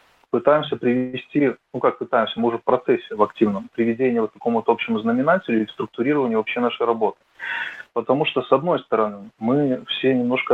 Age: 20-39